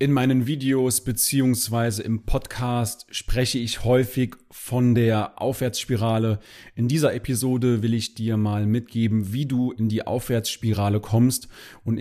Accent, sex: German, male